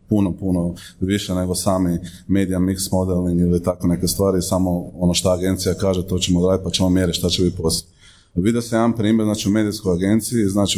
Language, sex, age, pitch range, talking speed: Croatian, male, 30-49, 90-105 Hz, 205 wpm